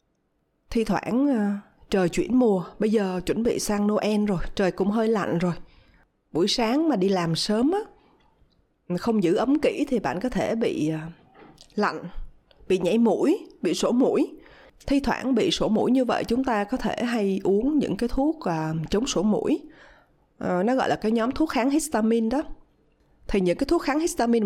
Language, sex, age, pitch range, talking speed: Vietnamese, female, 20-39, 195-270 Hz, 180 wpm